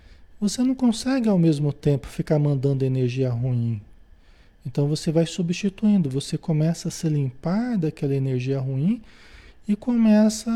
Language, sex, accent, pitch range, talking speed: Portuguese, male, Brazilian, 135-185 Hz, 135 wpm